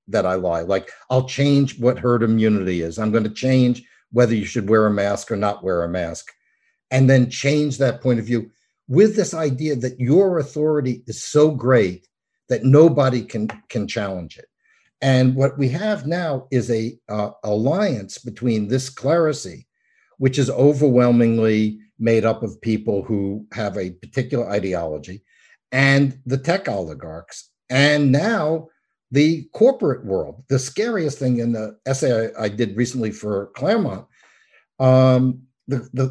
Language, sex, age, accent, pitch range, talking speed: English, male, 60-79, American, 115-150 Hz, 155 wpm